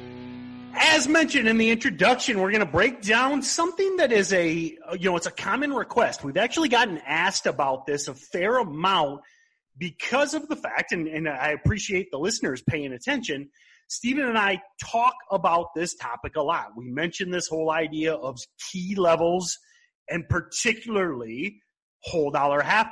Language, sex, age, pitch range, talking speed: English, male, 30-49, 145-220 Hz, 165 wpm